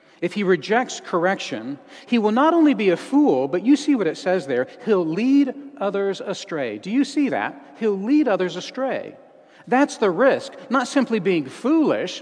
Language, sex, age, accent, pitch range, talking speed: English, male, 40-59, American, 165-255 Hz, 180 wpm